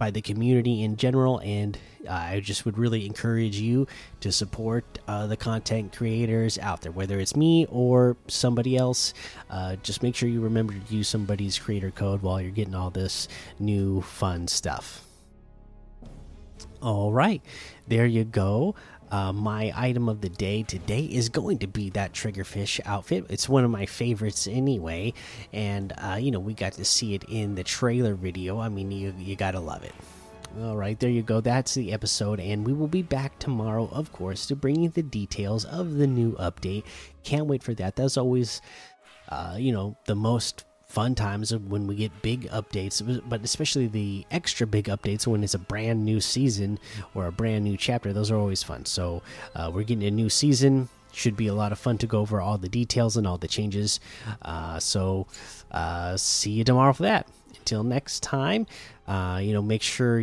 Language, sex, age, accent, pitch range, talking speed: English, male, 30-49, American, 100-120 Hz, 195 wpm